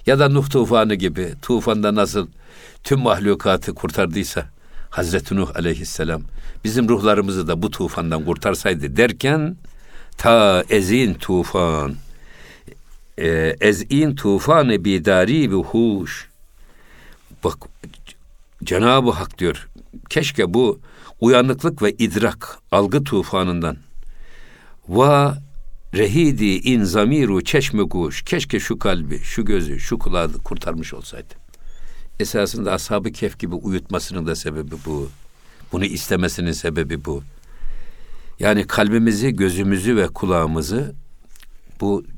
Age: 60-79